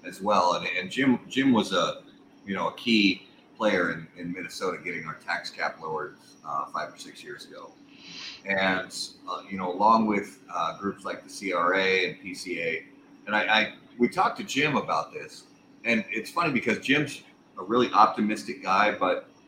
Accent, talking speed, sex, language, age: American, 180 wpm, male, English, 40-59